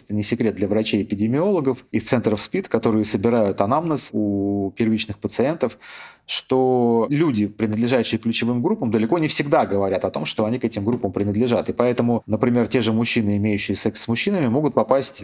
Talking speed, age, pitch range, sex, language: 170 wpm, 30-49, 100-120 Hz, male, Russian